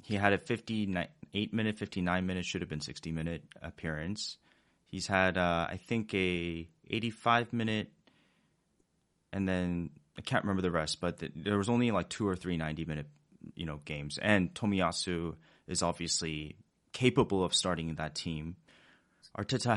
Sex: male